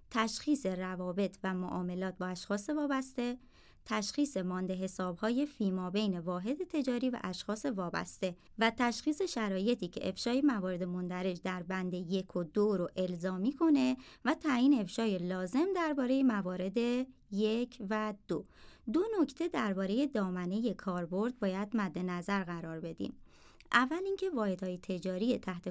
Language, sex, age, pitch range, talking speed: Persian, male, 30-49, 180-230 Hz, 135 wpm